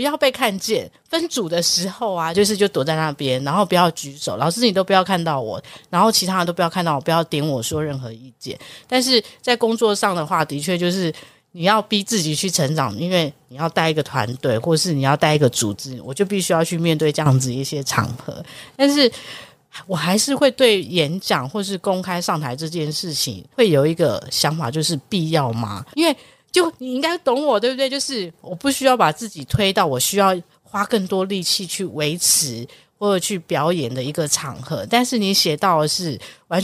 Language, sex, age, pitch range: Chinese, female, 30-49, 150-210 Hz